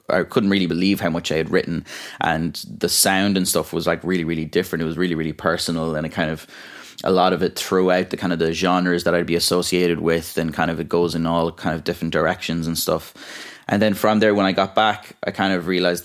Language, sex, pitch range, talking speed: English, male, 80-95 Hz, 255 wpm